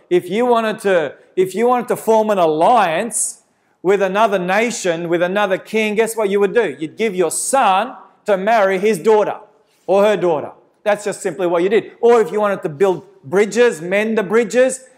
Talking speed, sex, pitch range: 185 wpm, male, 155-210 Hz